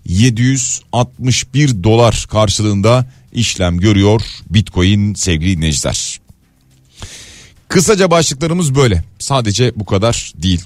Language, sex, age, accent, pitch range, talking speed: Turkish, male, 40-59, native, 110-150 Hz, 85 wpm